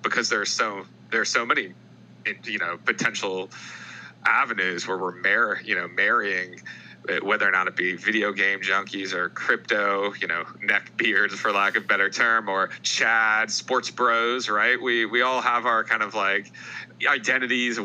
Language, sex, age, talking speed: English, male, 30-49, 175 wpm